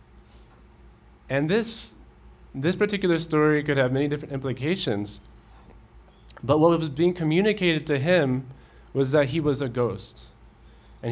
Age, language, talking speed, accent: 20-39, English, 130 wpm, American